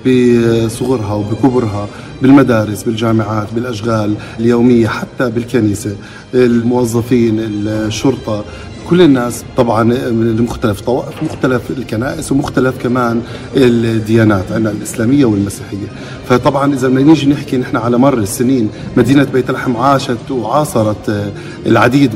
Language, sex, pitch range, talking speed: Arabic, male, 110-130 Hz, 100 wpm